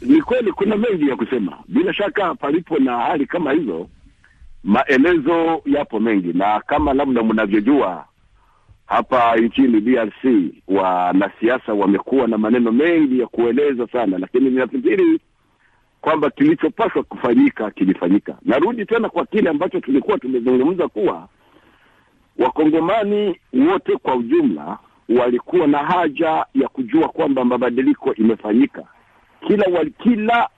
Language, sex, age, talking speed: Swahili, male, 50-69, 120 wpm